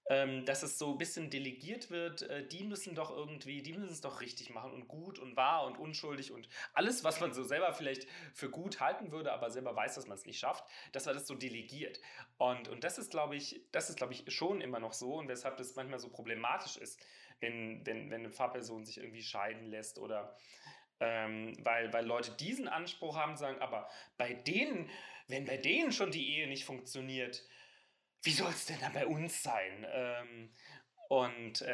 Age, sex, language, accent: 30-49, male, German, German